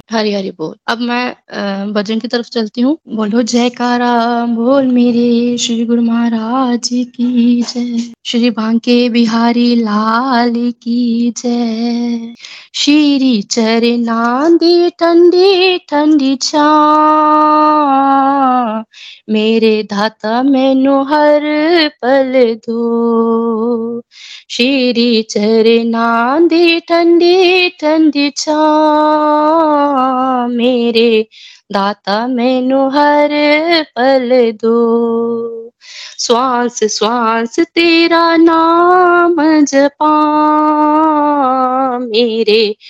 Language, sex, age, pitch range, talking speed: Hindi, female, 20-39, 230-300 Hz, 75 wpm